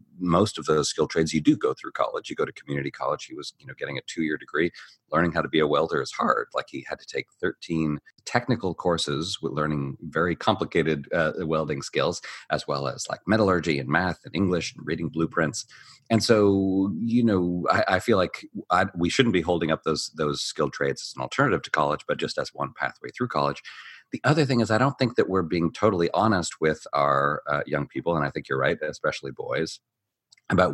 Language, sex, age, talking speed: English, male, 40-59, 225 wpm